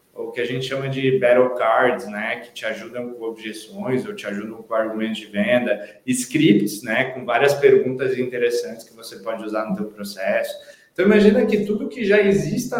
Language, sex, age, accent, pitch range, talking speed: Portuguese, male, 20-39, Brazilian, 135-200 Hz, 190 wpm